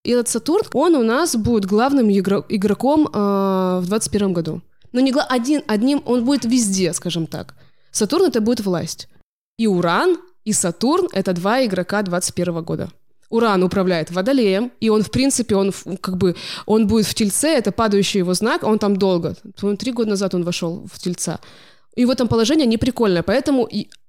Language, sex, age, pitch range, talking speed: Russian, female, 20-39, 195-260 Hz, 175 wpm